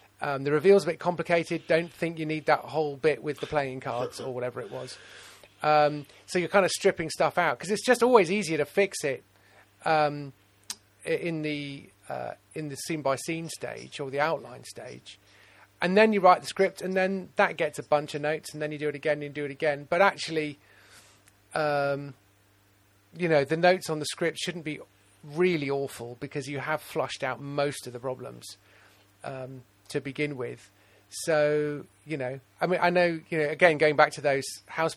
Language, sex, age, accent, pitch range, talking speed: English, male, 40-59, British, 125-160 Hz, 200 wpm